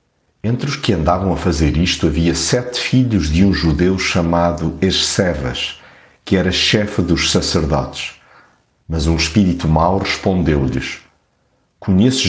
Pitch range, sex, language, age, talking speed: 80-100 Hz, male, Portuguese, 50-69, 125 wpm